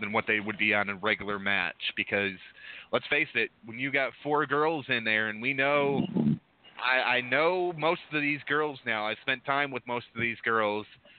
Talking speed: 210 wpm